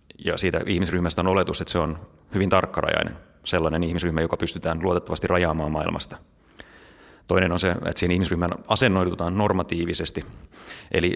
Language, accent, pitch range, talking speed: Finnish, native, 80-90 Hz, 140 wpm